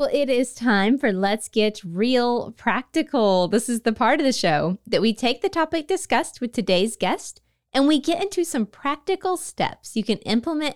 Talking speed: 195 wpm